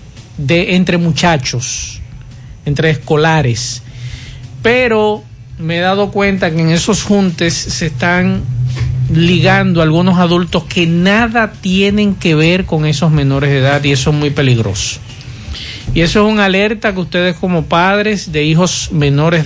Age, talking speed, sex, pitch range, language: 50-69, 140 wpm, male, 135-185 Hz, Spanish